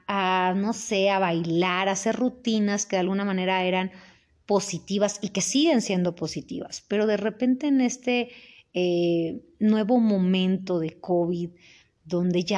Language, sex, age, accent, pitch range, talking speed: Spanish, female, 30-49, Mexican, 175-210 Hz, 150 wpm